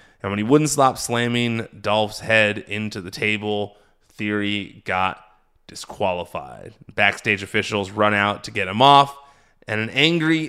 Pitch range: 105-125 Hz